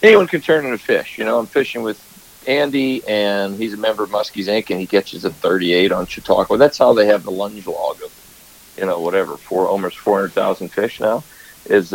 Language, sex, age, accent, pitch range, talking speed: English, male, 50-69, American, 105-130 Hz, 215 wpm